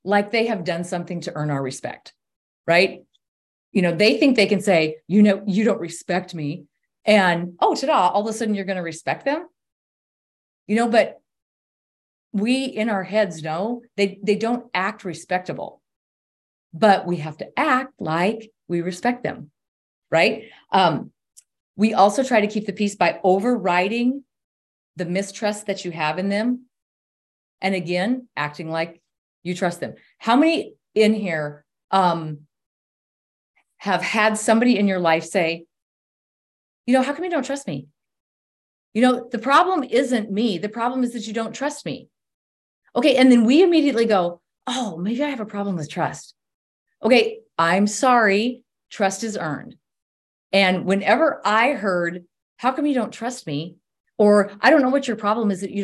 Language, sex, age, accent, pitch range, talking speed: English, female, 40-59, American, 175-240 Hz, 170 wpm